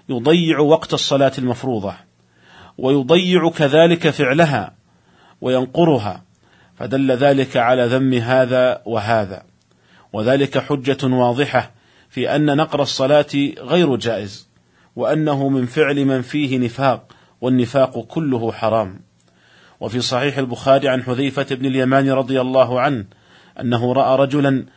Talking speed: 110 wpm